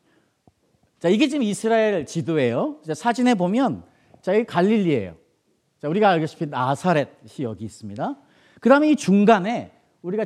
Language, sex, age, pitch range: Korean, male, 40-59, 150-230 Hz